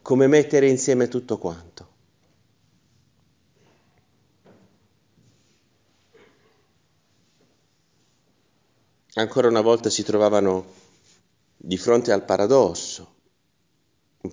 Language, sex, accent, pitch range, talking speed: Italian, male, native, 95-120 Hz, 65 wpm